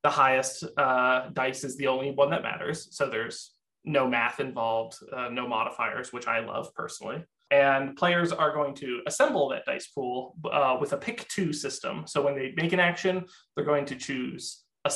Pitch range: 135-185 Hz